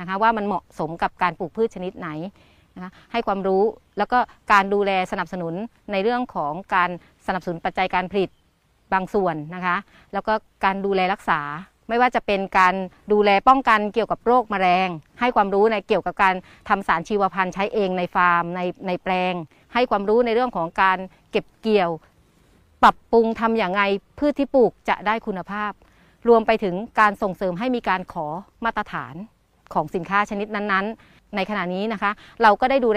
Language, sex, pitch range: Thai, female, 180-215 Hz